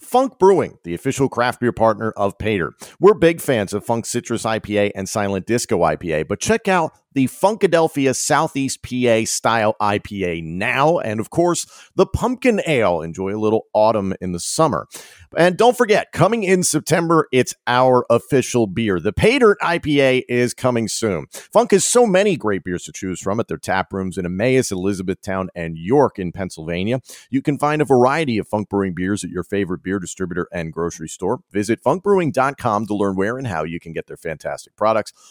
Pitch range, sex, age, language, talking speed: 100-145 Hz, male, 40-59, English, 185 wpm